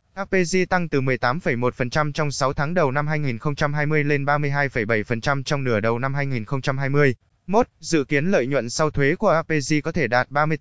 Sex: male